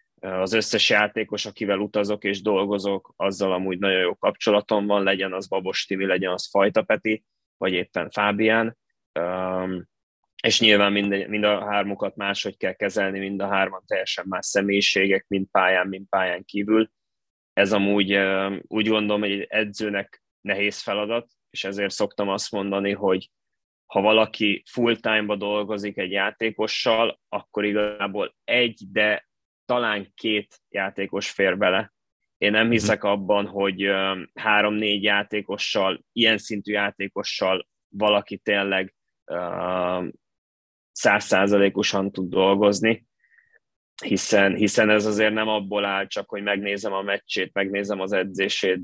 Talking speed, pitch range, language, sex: 130 wpm, 95-105 Hz, Hungarian, male